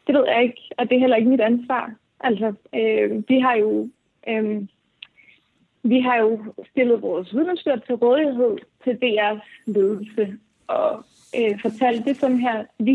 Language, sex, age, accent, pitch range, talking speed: Danish, female, 20-39, native, 215-245 Hz, 160 wpm